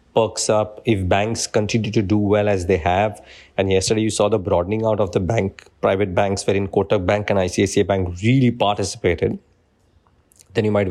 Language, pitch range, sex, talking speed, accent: English, 90-105 Hz, male, 185 wpm, Indian